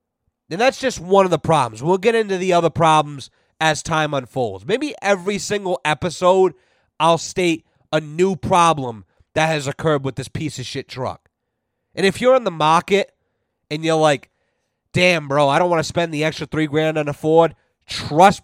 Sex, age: male, 30-49